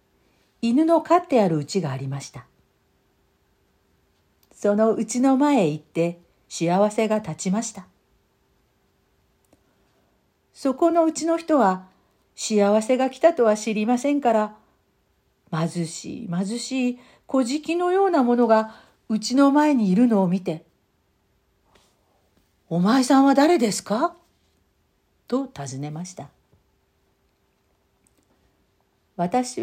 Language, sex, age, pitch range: Japanese, female, 50-69, 185-270 Hz